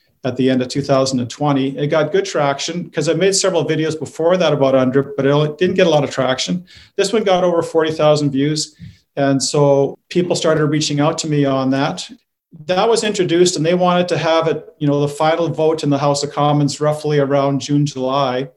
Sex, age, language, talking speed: male, 40-59, English, 210 wpm